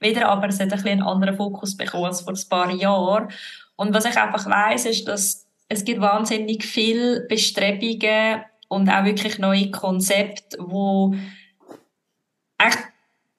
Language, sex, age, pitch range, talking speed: German, female, 20-39, 195-215 Hz, 150 wpm